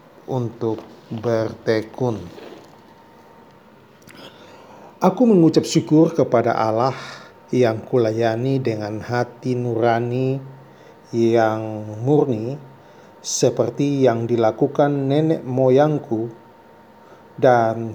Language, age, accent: Indonesian, 40-59, native